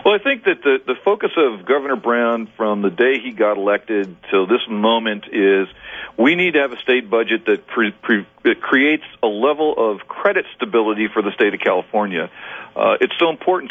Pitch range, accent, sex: 100-125 Hz, American, male